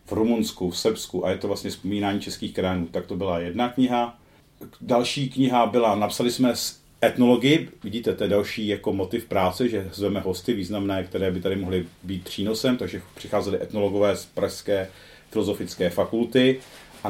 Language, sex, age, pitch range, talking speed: Czech, male, 40-59, 90-115 Hz, 170 wpm